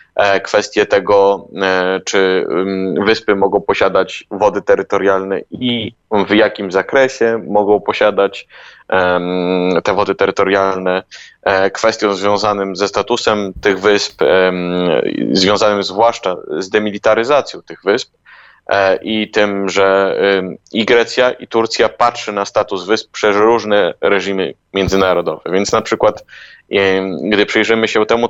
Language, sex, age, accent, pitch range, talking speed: Polish, male, 20-39, native, 95-120 Hz, 110 wpm